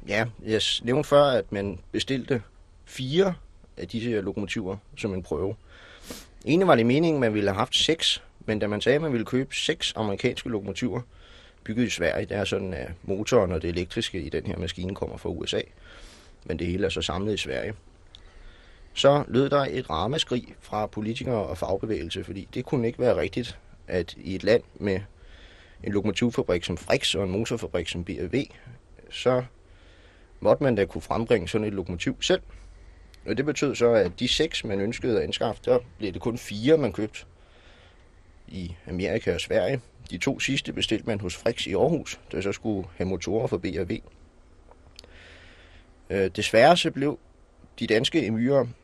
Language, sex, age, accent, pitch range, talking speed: Danish, male, 30-49, native, 85-120 Hz, 180 wpm